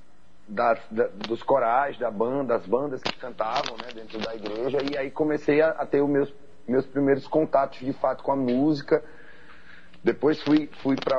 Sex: male